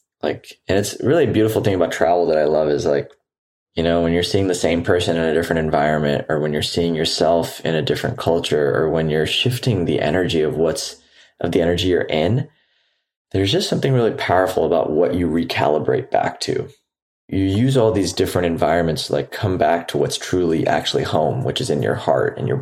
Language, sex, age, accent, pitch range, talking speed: English, male, 20-39, American, 85-100 Hz, 215 wpm